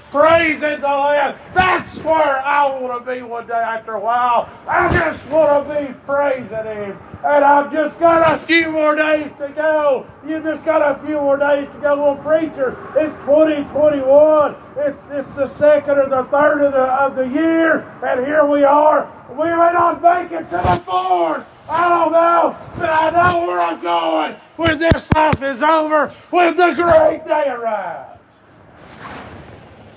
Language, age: English, 40-59